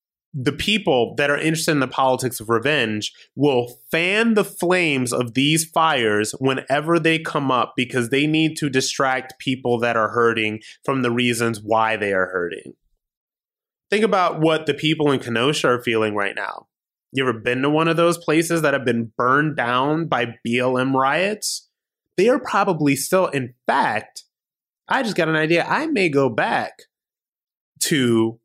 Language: English